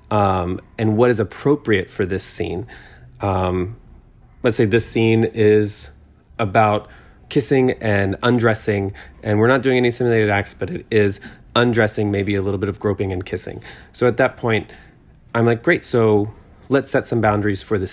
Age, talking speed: 30-49, 170 wpm